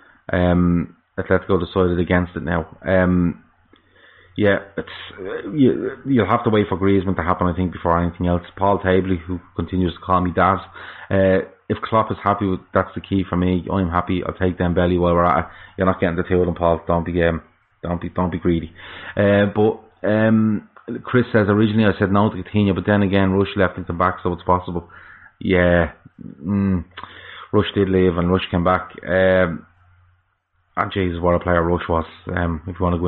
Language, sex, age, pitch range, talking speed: English, male, 20-39, 90-100 Hz, 205 wpm